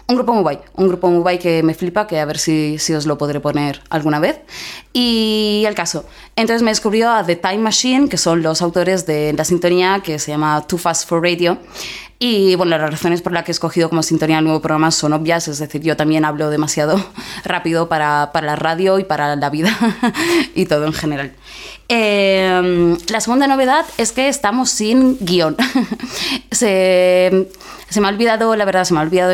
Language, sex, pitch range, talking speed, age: Spanish, female, 160-215 Hz, 205 wpm, 20-39